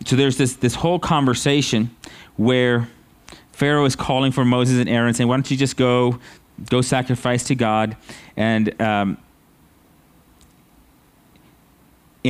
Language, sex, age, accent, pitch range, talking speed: English, male, 30-49, American, 105-125 Hz, 125 wpm